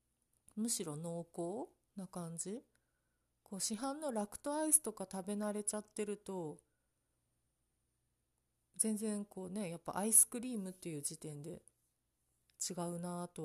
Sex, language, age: female, Japanese, 40-59